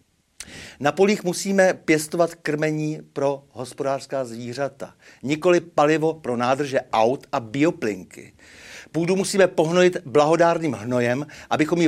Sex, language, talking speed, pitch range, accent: male, Czech, 110 wpm, 135-170 Hz, native